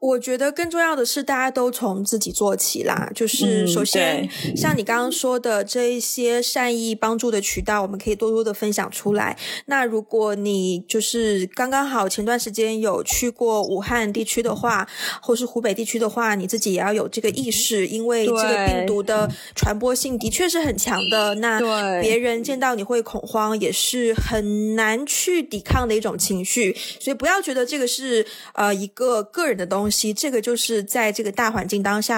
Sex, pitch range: female, 205-245 Hz